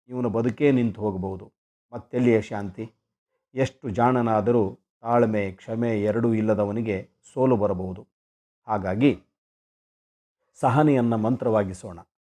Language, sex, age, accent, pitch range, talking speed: Kannada, male, 50-69, native, 105-125 Hz, 85 wpm